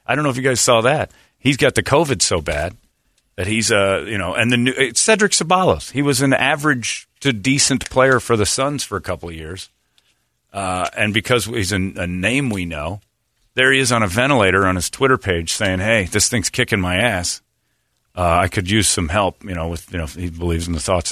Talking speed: 235 wpm